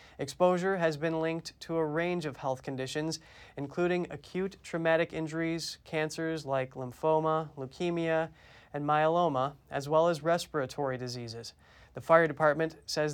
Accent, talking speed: American, 130 wpm